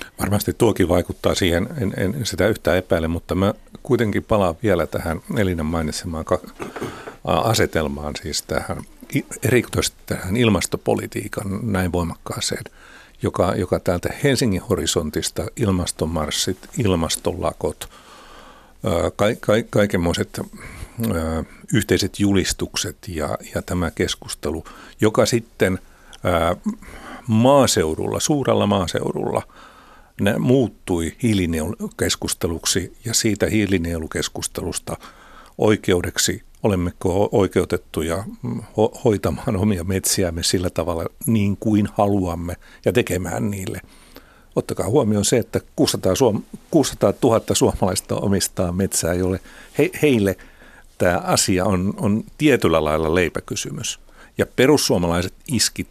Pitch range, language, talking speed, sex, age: 90-110 Hz, Finnish, 90 wpm, male, 60-79